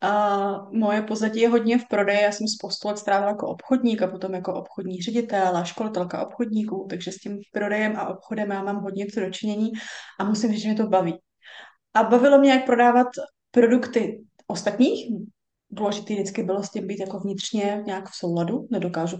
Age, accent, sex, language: 20-39, native, female, Czech